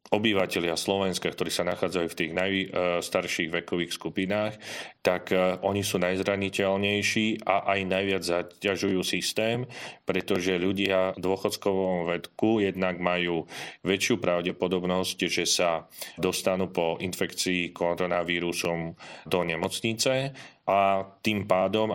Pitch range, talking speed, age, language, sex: 90-100 Hz, 105 wpm, 40-59, Slovak, male